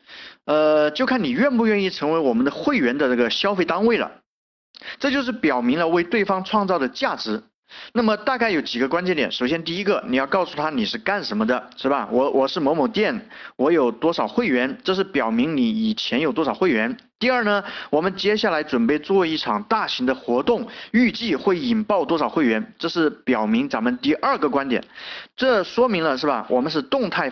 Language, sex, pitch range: Chinese, male, 165-245 Hz